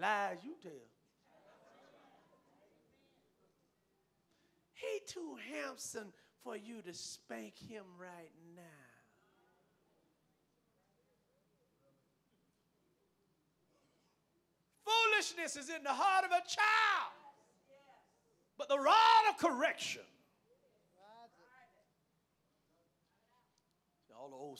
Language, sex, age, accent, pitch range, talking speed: English, male, 50-69, American, 245-335 Hz, 70 wpm